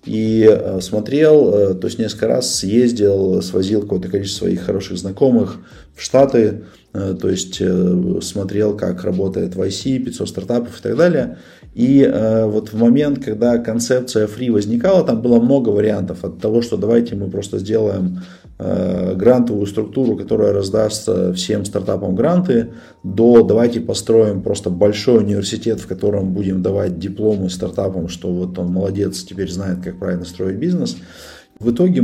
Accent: native